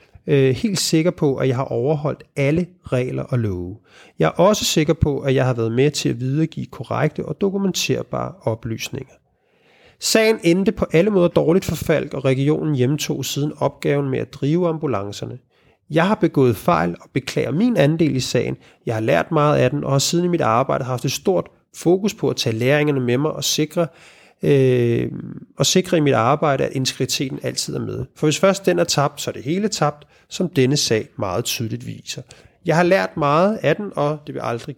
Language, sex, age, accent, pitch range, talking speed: Danish, male, 30-49, native, 130-170 Hz, 200 wpm